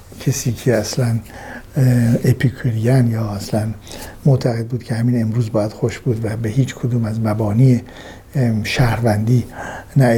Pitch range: 115-130 Hz